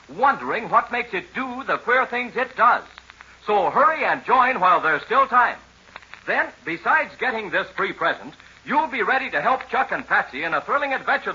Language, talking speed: English, 190 wpm